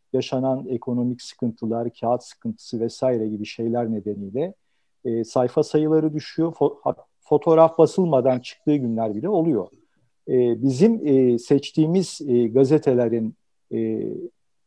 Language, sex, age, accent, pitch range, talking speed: Turkish, male, 50-69, native, 120-140 Hz, 110 wpm